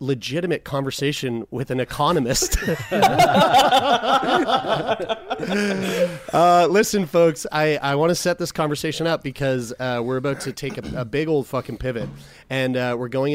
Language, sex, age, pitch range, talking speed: English, male, 30-49, 120-155 Hz, 145 wpm